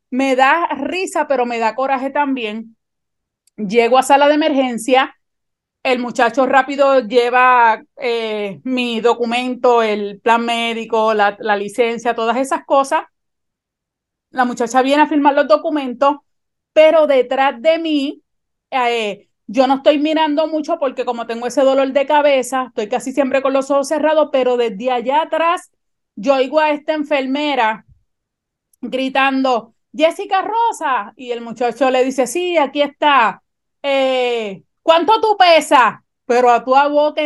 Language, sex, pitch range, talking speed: Spanish, female, 240-295 Hz, 140 wpm